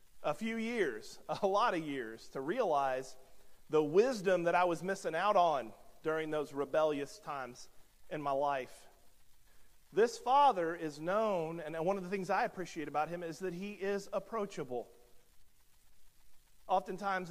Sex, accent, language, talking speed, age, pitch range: male, American, English, 150 wpm, 40-59, 170-240 Hz